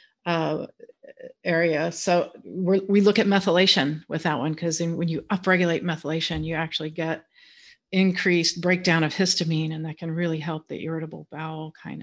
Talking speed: 155 wpm